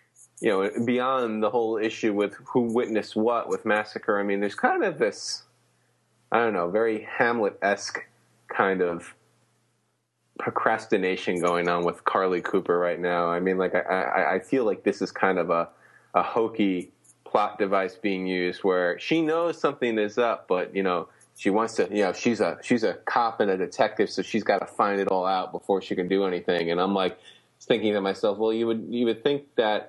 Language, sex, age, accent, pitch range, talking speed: English, male, 20-39, American, 95-115 Hz, 195 wpm